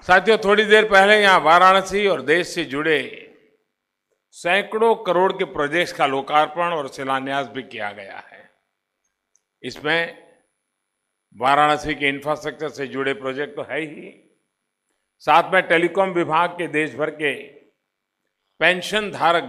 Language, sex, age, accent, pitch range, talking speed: Hindi, male, 50-69, native, 135-185 Hz, 125 wpm